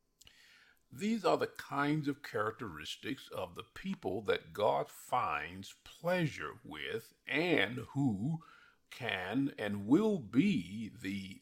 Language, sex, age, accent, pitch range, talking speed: English, male, 50-69, American, 110-170 Hz, 110 wpm